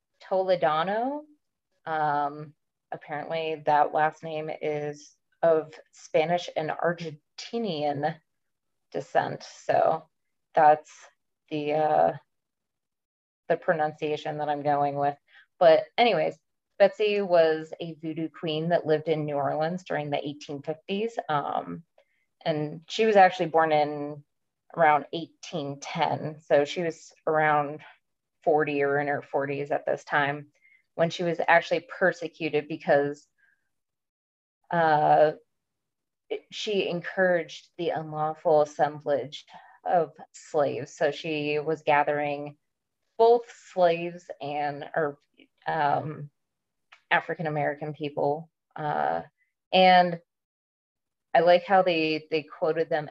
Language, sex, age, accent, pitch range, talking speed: English, female, 20-39, American, 145-170 Hz, 105 wpm